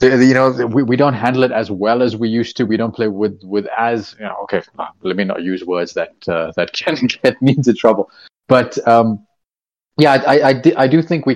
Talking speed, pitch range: 230 wpm, 105-135 Hz